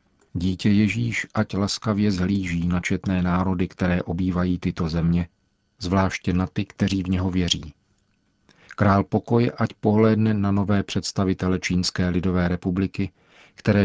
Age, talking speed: 40-59, 130 wpm